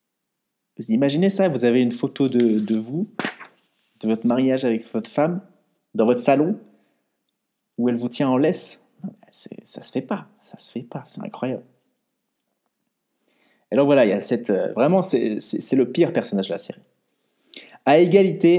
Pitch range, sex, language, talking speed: 110-175 Hz, male, French, 175 wpm